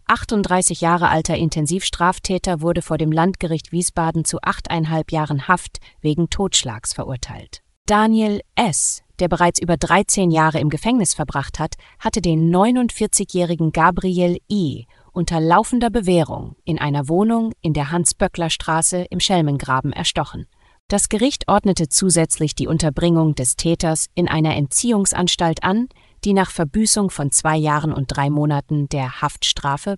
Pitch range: 155-185 Hz